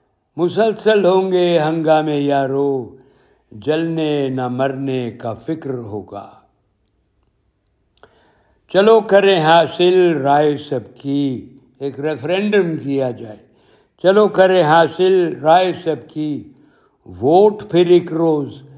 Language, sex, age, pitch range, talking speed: Urdu, male, 60-79, 125-165 Hz, 100 wpm